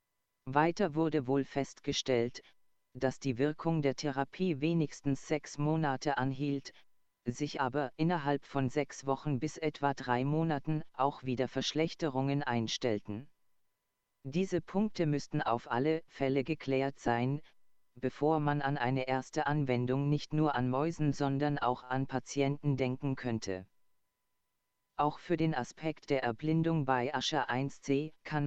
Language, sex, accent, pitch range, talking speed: German, female, German, 125-155 Hz, 130 wpm